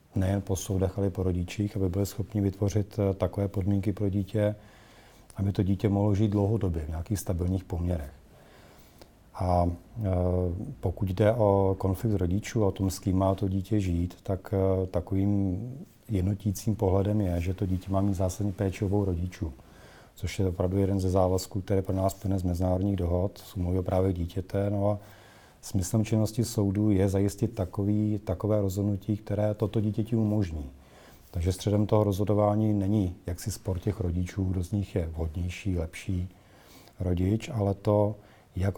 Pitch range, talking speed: 90-105 Hz, 155 wpm